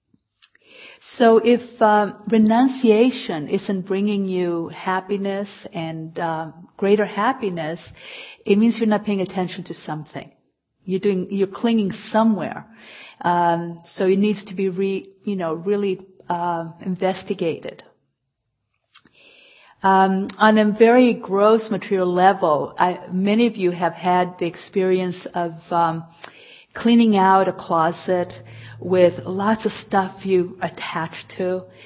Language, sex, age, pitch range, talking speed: English, female, 50-69, 180-210 Hz, 120 wpm